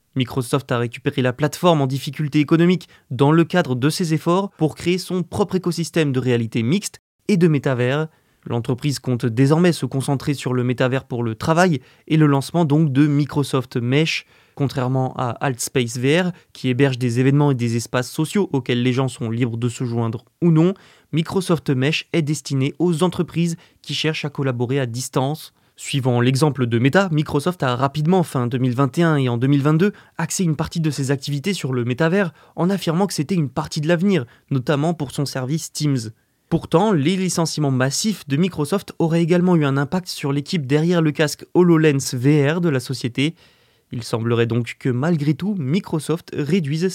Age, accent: 20-39, French